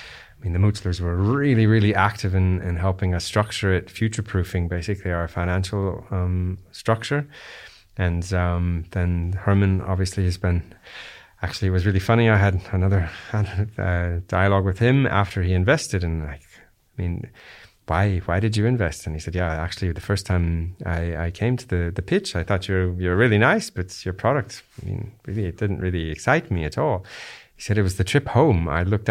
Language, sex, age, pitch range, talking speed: English, male, 30-49, 90-105 Hz, 190 wpm